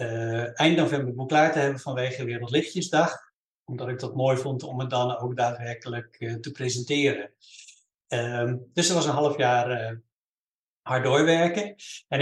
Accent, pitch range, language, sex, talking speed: Dutch, 120-140 Hz, Dutch, male, 155 wpm